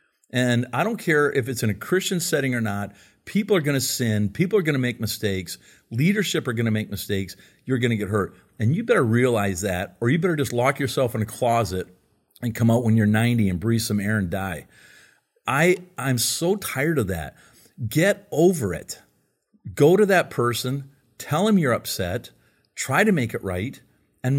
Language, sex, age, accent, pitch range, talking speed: English, male, 50-69, American, 110-155 Hz, 205 wpm